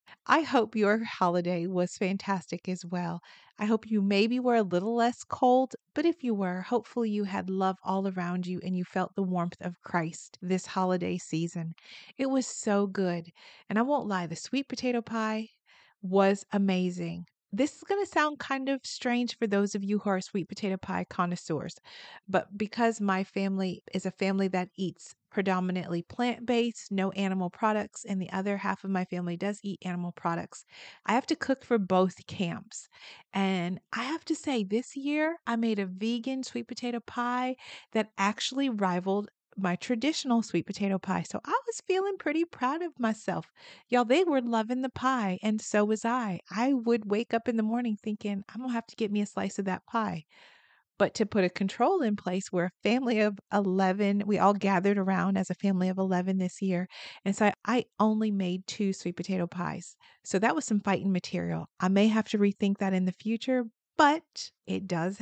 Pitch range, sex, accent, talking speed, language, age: 185-245 Hz, female, American, 195 wpm, English, 40-59